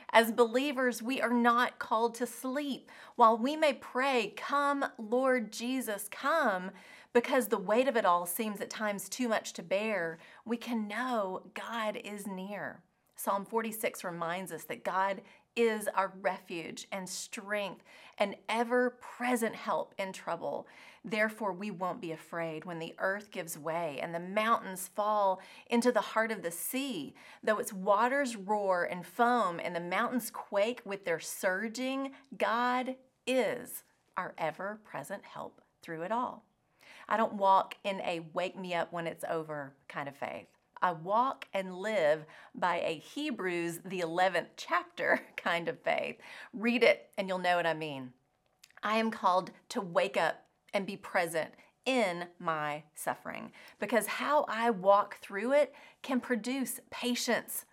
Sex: female